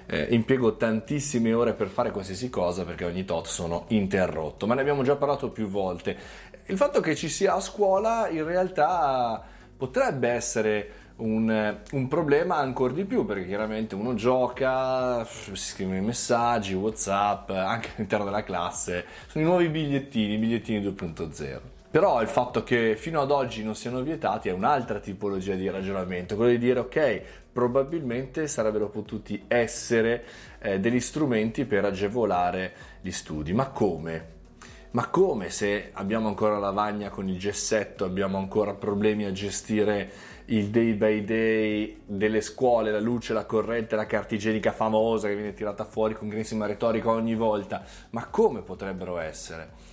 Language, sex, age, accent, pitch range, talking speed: Italian, male, 20-39, native, 100-120 Hz, 155 wpm